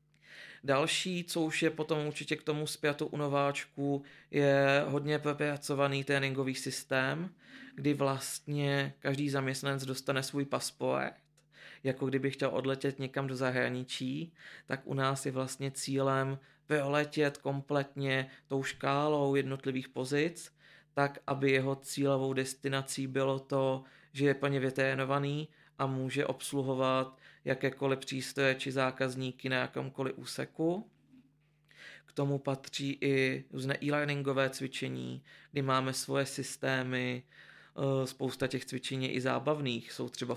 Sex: male